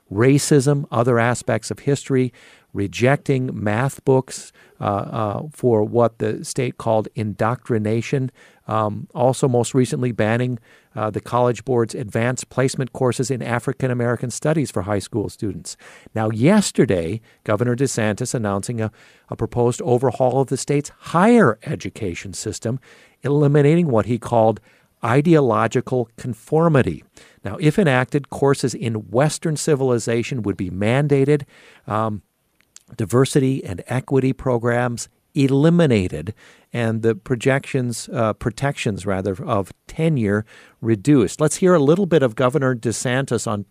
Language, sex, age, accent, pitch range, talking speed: English, male, 50-69, American, 110-135 Hz, 125 wpm